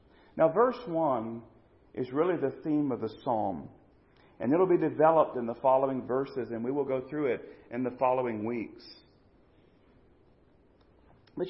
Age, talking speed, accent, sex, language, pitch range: 40-59, 155 wpm, American, male, English, 130-160 Hz